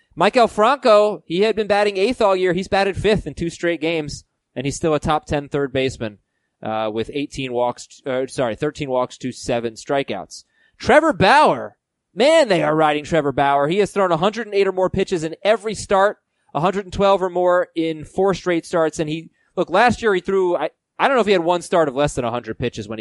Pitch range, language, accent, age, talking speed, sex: 140-190 Hz, English, American, 20-39, 215 wpm, male